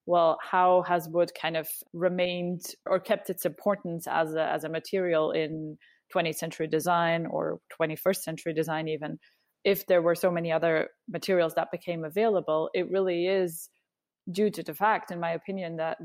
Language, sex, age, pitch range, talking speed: English, female, 20-39, 165-190 Hz, 170 wpm